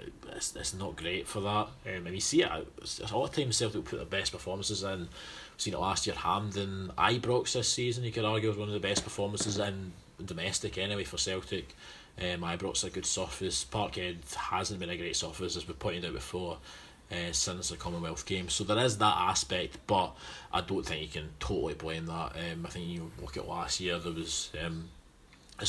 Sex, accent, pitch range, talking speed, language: male, British, 85-95 Hz, 220 wpm, English